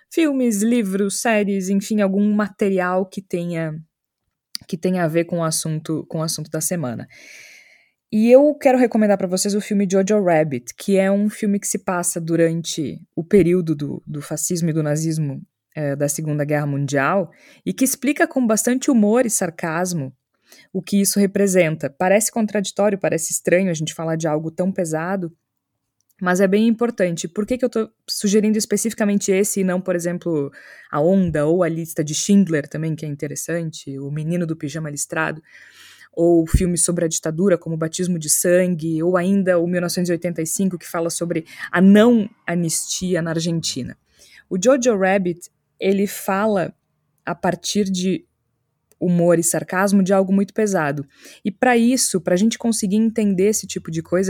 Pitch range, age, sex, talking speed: 160-200 Hz, 20-39, female, 170 wpm